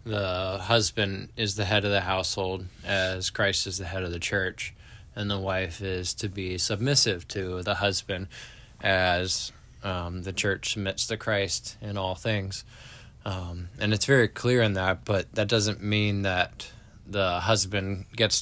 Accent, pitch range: American, 95-110 Hz